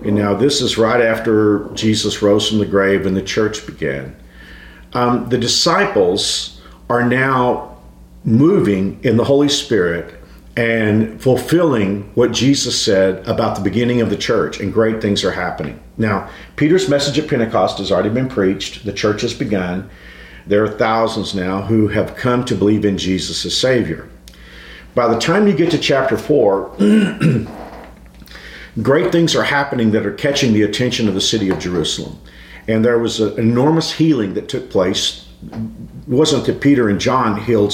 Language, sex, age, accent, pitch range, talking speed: English, male, 50-69, American, 95-130 Hz, 165 wpm